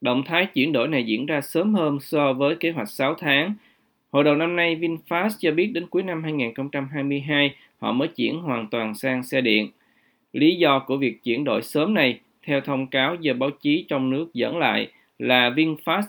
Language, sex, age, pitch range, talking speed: Vietnamese, male, 20-39, 130-165 Hz, 200 wpm